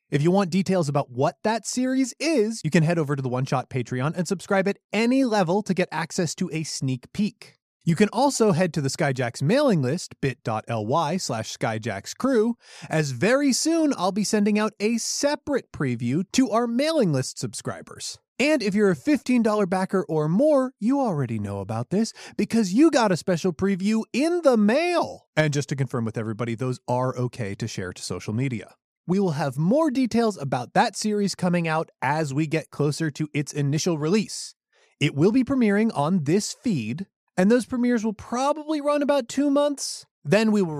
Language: English